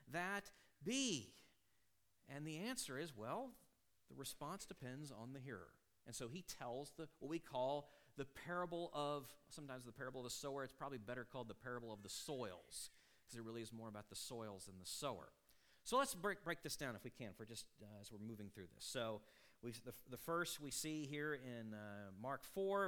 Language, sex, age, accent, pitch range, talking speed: English, male, 40-59, American, 120-185 Hz, 205 wpm